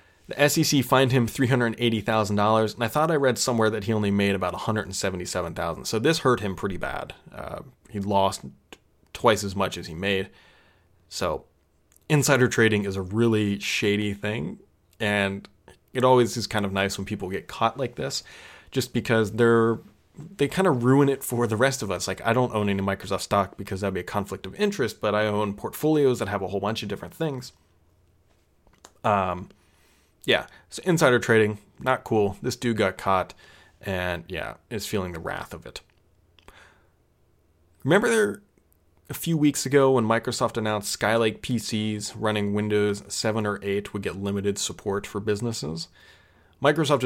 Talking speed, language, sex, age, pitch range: 175 wpm, English, male, 20-39, 100-125 Hz